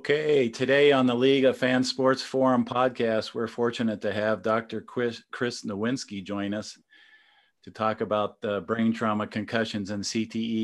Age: 40-59